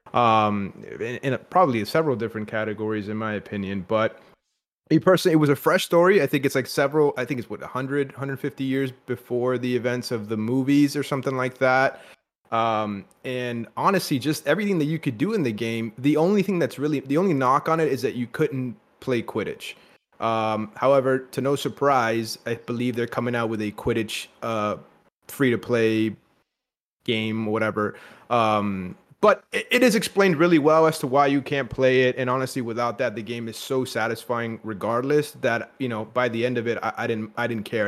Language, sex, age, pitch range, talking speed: English, male, 30-49, 115-135 Hz, 195 wpm